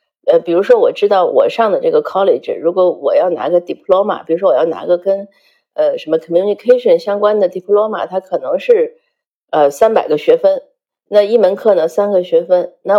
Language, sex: Chinese, female